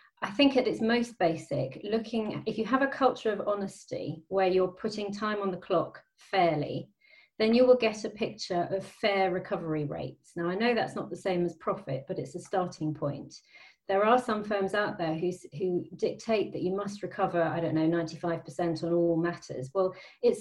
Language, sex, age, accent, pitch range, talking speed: English, female, 30-49, British, 170-210 Hz, 205 wpm